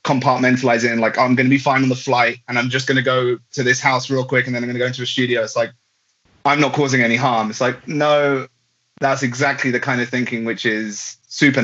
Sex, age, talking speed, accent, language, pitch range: male, 20-39, 265 wpm, British, English, 115-130 Hz